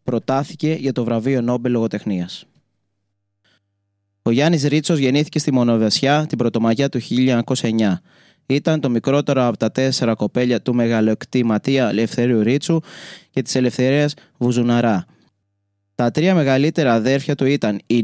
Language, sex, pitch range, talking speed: Greek, male, 110-140 Hz, 130 wpm